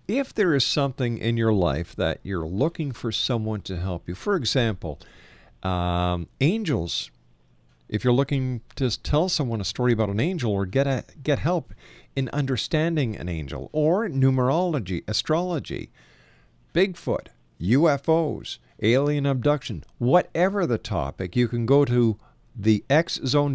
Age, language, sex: 50-69, English, male